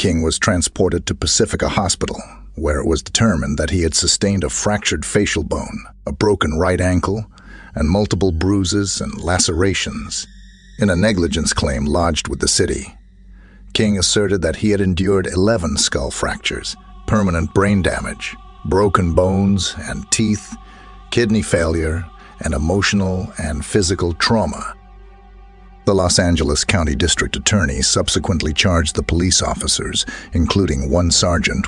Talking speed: 135 wpm